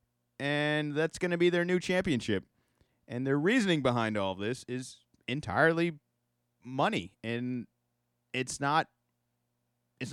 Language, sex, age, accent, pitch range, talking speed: English, male, 30-49, American, 120-150 Hz, 125 wpm